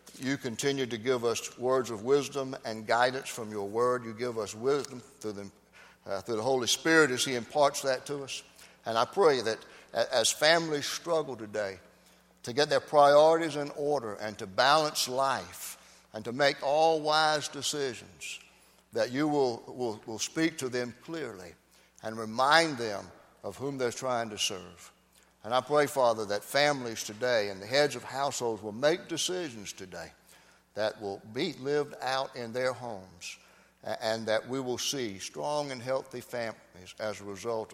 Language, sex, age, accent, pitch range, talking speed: English, male, 60-79, American, 100-140 Hz, 170 wpm